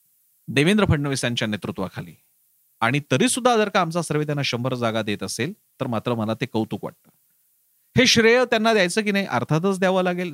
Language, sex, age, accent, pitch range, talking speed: Marathi, male, 40-59, native, 145-200 Hz, 180 wpm